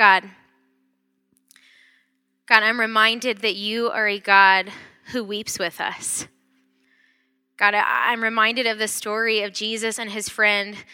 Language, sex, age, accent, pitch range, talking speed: English, female, 20-39, American, 190-225 Hz, 130 wpm